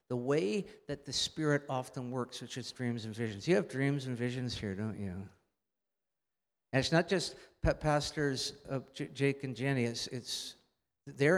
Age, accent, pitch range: 50-69, American, 120-150 Hz